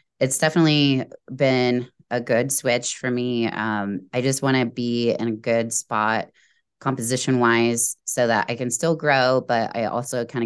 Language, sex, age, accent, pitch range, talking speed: English, female, 20-39, American, 110-125 Hz, 170 wpm